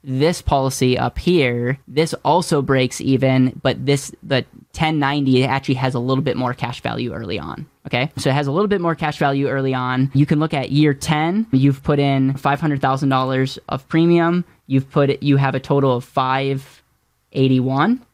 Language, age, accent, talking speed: English, 10-29, American, 180 wpm